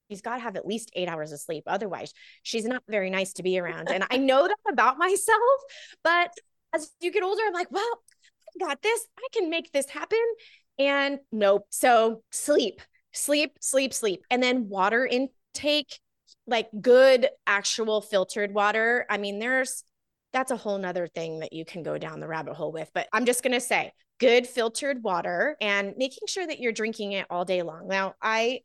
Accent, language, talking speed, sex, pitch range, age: American, English, 195 wpm, female, 205-275 Hz, 20-39